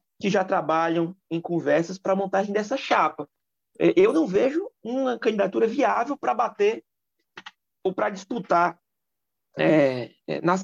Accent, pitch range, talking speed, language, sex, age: Brazilian, 165-225 Hz, 130 wpm, Portuguese, male, 30-49